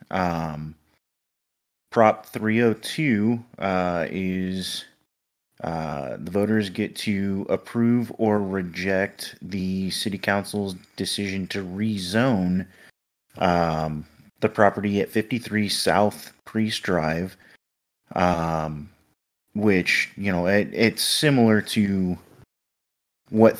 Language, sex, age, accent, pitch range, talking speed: English, male, 30-49, American, 90-110 Hz, 90 wpm